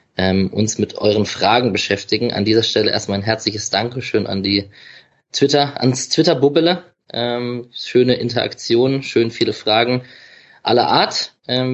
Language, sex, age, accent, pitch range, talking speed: German, male, 20-39, German, 95-125 Hz, 140 wpm